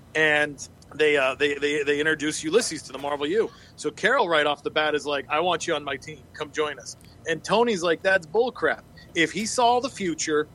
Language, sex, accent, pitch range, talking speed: English, male, American, 140-165 Hz, 220 wpm